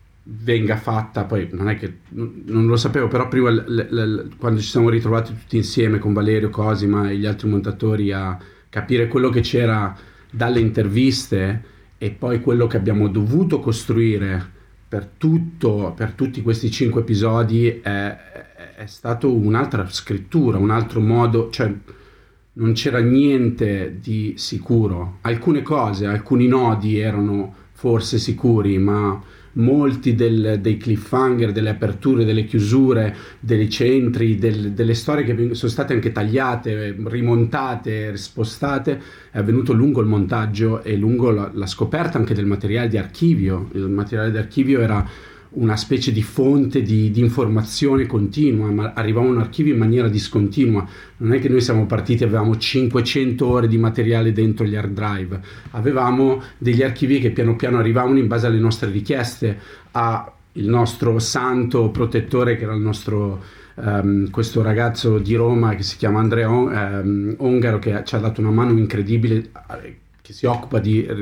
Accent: native